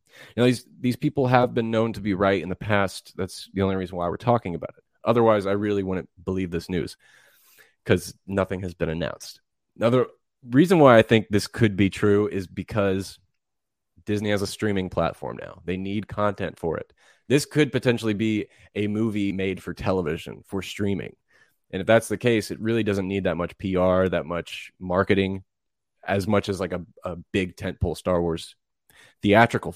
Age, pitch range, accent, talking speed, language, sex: 20-39, 95-115 Hz, American, 190 wpm, English, male